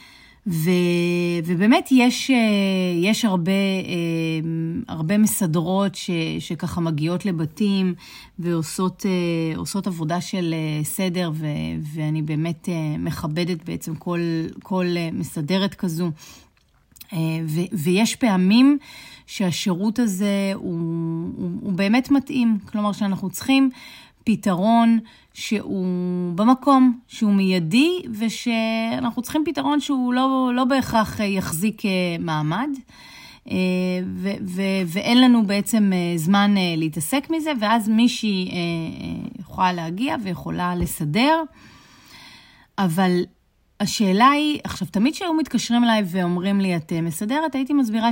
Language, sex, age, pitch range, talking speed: Hebrew, female, 30-49, 170-230 Hz, 95 wpm